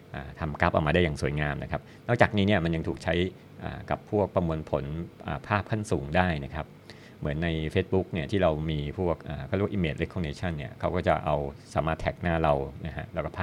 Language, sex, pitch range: Thai, male, 80-95 Hz